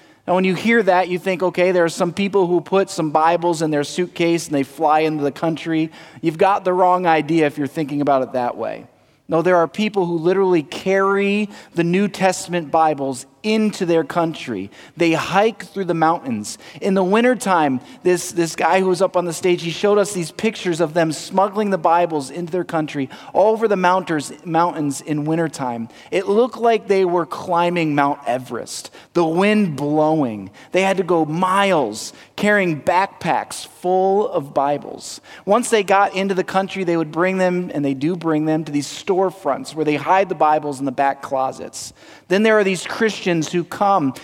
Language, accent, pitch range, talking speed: English, American, 155-190 Hz, 195 wpm